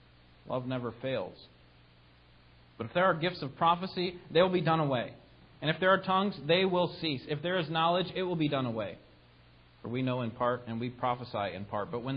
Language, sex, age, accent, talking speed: English, male, 40-59, American, 215 wpm